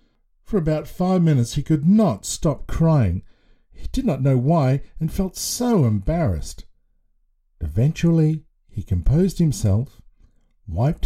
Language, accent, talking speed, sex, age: English, Australian, 125 wpm, male, 50-69